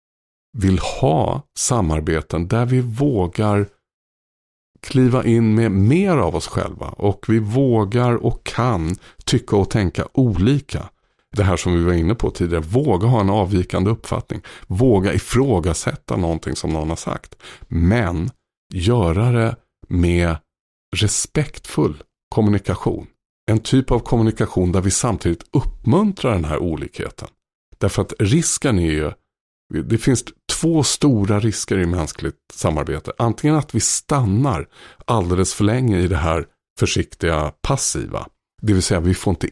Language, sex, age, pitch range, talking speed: Swedish, male, 50-69, 85-115 Hz, 140 wpm